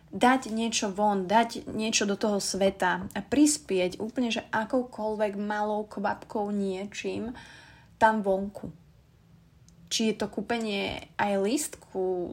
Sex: female